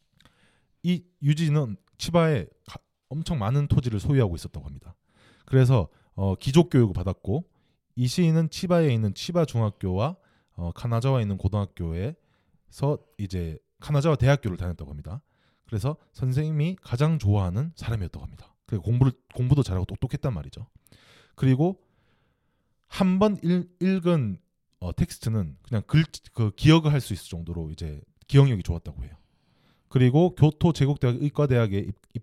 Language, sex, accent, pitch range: Korean, male, native, 100-145 Hz